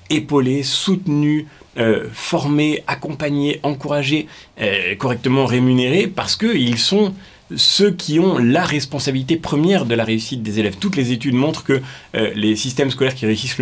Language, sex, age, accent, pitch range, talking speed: French, male, 30-49, French, 115-150 Hz, 150 wpm